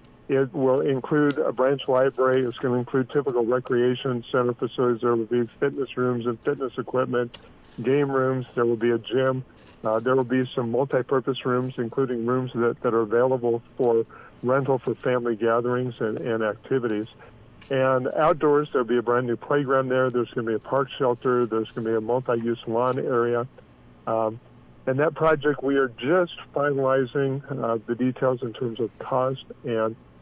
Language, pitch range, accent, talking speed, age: English, 120-135 Hz, American, 185 wpm, 50-69